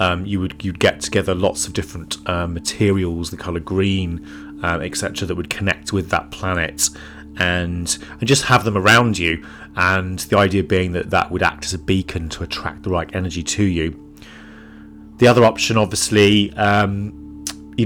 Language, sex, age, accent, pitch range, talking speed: English, male, 30-49, British, 75-100 Hz, 175 wpm